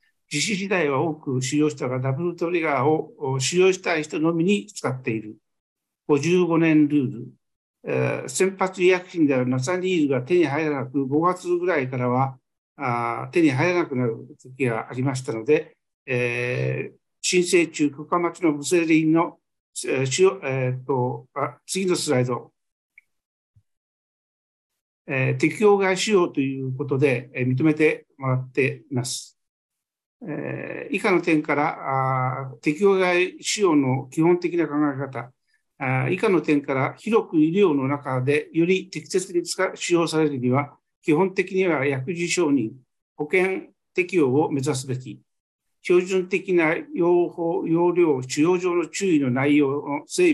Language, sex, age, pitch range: Japanese, male, 60-79, 135-175 Hz